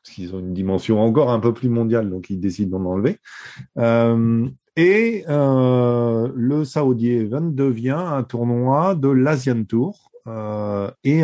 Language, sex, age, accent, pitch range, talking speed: French, male, 40-59, French, 105-135 Hz, 155 wpm